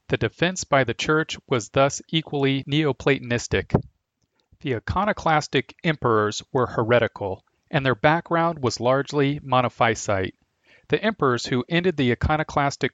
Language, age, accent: English, 40-59, American